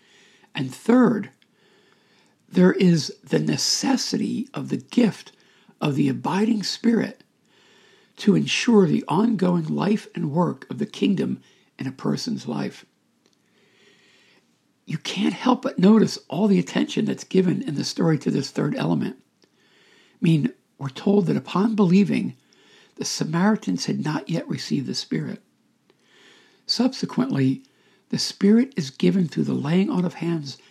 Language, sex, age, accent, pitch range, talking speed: English, male, 60-79, American, 180-225 Hz, 135 wpm